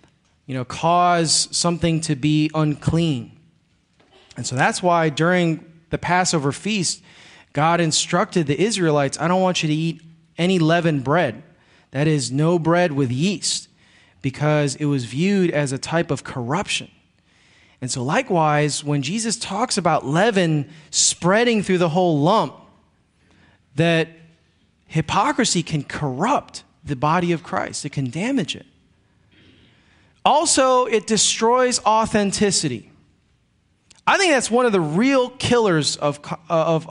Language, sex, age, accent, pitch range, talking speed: English, male, 30-49, American, 155-200 Hz, 135 wpm